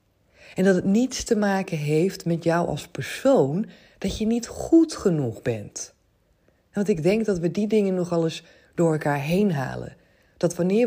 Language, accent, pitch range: Dutch, Dutch, 150-200 Hz